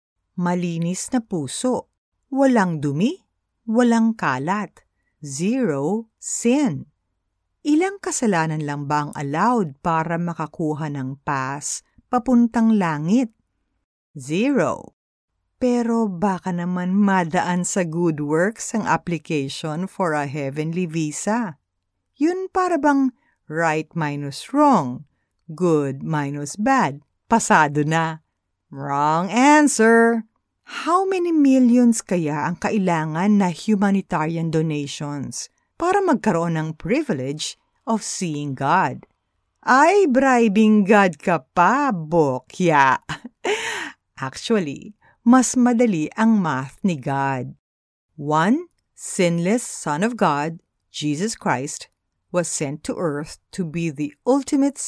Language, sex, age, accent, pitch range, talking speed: Filipino, female, 50-69, native, 150-235 Hz, 100 wpm